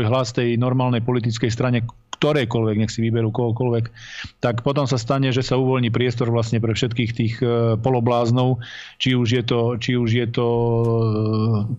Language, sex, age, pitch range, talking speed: Slovak, male, 40-59, 115-125 Hz, 145 wpm